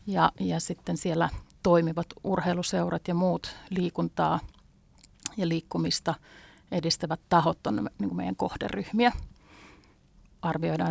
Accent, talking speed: native, 100 wpm